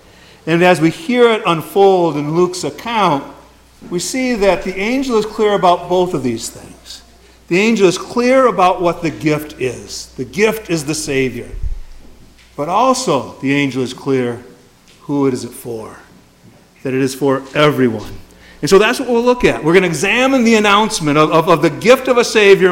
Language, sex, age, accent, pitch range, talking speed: English, male, 50-69, American, 150-205 Hz, 190 wpm